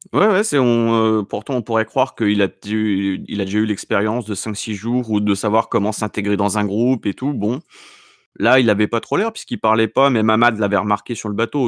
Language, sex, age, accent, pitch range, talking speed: French, male, 30-49, French, 100-135 Hz, 245 wpm